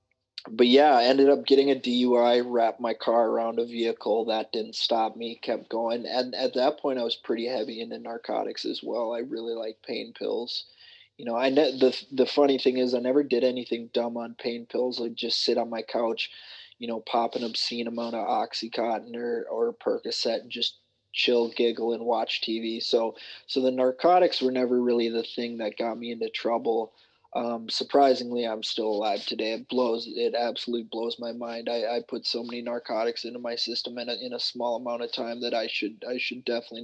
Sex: male